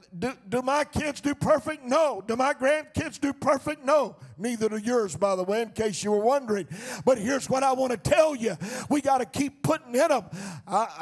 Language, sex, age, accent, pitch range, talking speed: English, male, 50-69, American, 220-275 Hz, 220 wpm